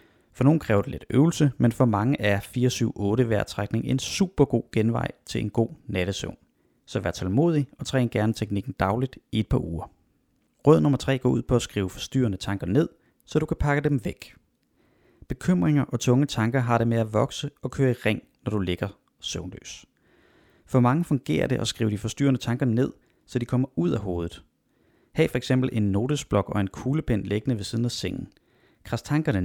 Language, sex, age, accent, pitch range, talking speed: Danish, male, 30-49, native, 105-135 Hz, 200 wpm